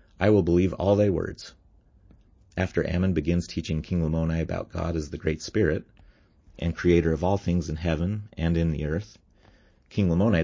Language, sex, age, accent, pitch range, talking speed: English, male, 30-49, American, 80-95 Hz, 180 wpm